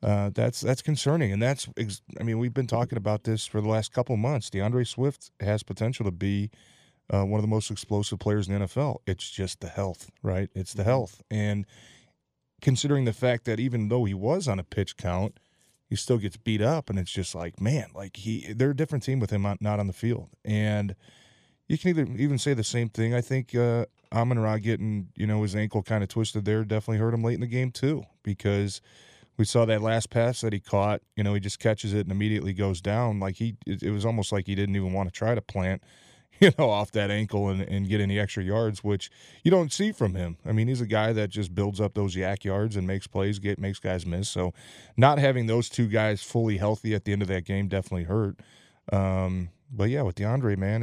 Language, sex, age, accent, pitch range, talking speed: English, male, 20-39, American, 100-120 Hz, 235 wpm